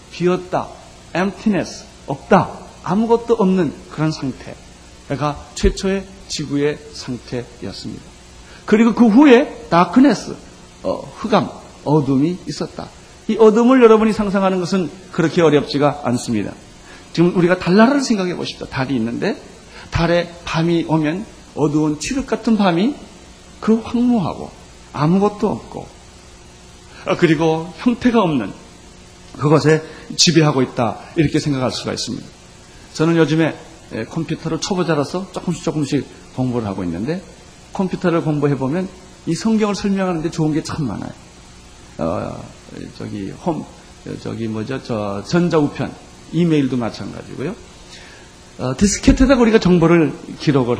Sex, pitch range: male, 130-190 Hz